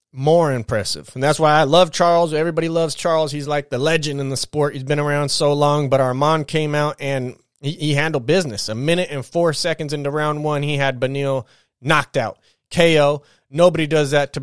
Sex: male